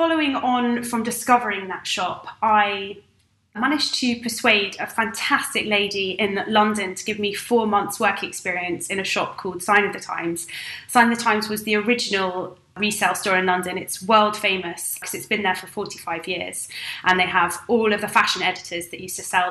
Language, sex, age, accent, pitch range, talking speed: English, female, 20-39, British, 190-235 Hz, 195 wpm